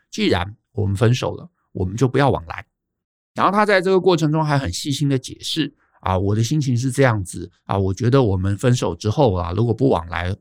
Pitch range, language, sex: 95-135 Hz, Chinese, male